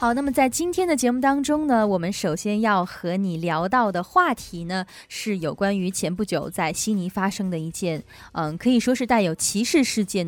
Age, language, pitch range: 20-39, Chinese, 180-245 Hz